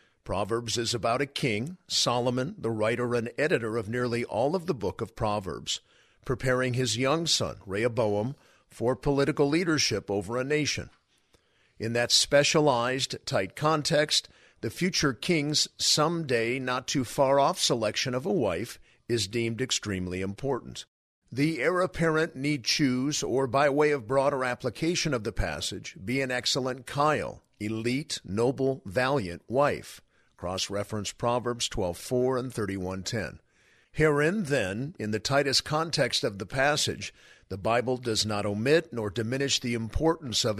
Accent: American